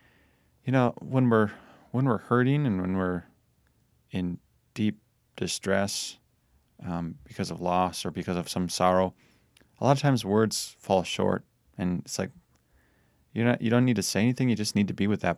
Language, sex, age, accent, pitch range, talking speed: English, male, 30-49, American, 90-115 Hz, 185 wpm